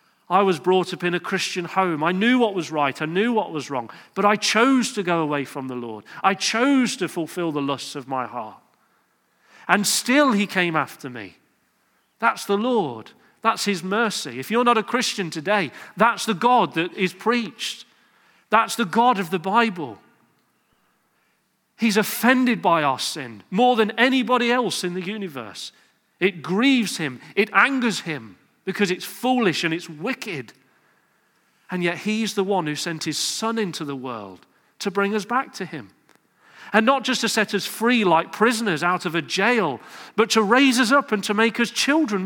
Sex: male